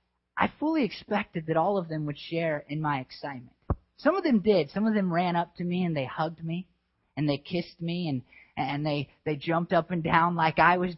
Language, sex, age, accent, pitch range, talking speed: English, male, 30-49, American, 130-180 Hz, 230 wpm